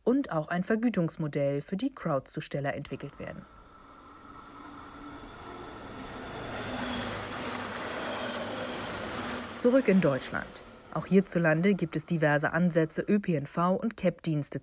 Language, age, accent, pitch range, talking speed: German, 50-69, German, 150-195 Hz, 85 wpm